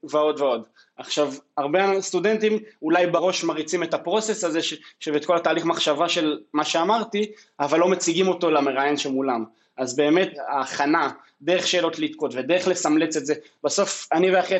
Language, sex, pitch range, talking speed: Hebrew, male, 150-185 Hz, 150 wpm